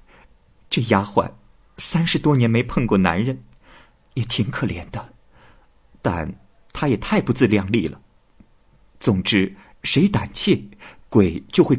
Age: 50-69